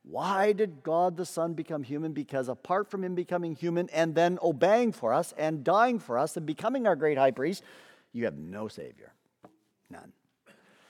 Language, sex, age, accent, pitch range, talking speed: English, male, 50-69, American, 130-195 Hz, 180 wpm